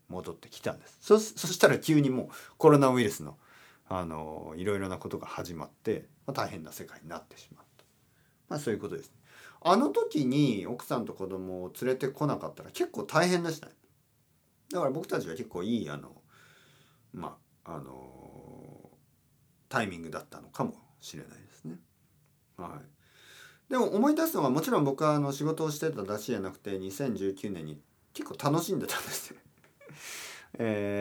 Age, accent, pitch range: 40-59, native, 80-135 Hz